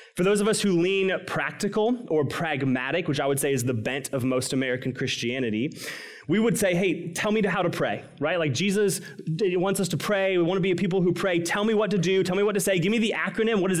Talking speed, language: 260 wpm, English